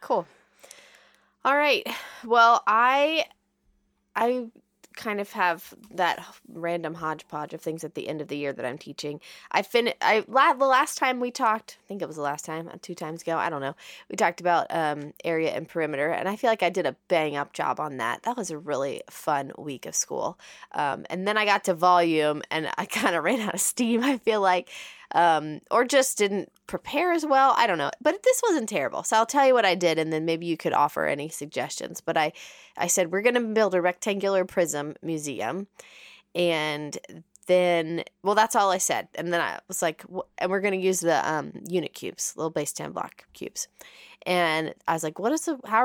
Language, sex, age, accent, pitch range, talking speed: English, female, 20-39, American, 160-220 Hz, 215 wpm